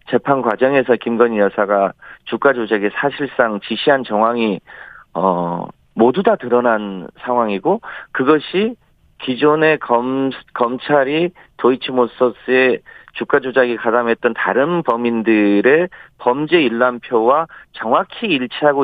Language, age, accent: Korean, 40-59, native